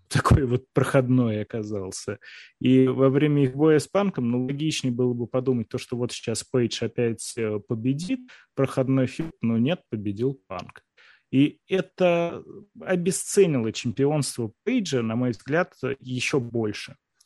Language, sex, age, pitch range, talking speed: Russian, male, 20-39, 120-145 Hz, 135 wpm